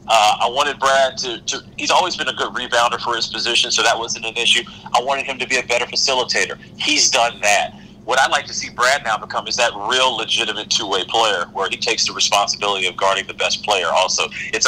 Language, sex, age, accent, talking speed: English, male, 40-59, American, 235 wpm